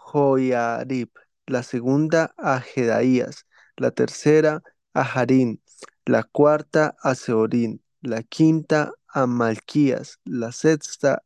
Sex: male